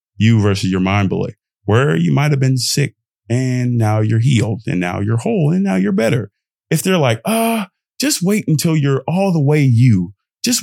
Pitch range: 100-165 Hz